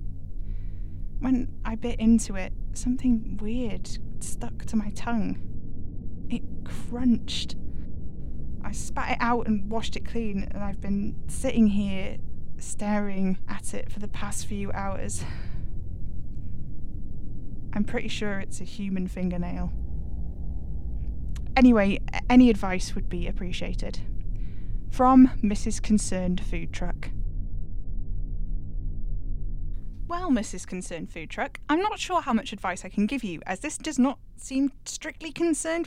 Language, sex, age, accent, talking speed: English, female, 10-29, British, 125 wpm